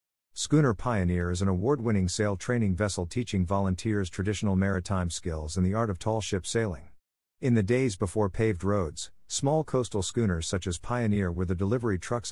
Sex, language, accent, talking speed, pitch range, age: male, English, American, 175 wpm, 90-115 Hz, 50-69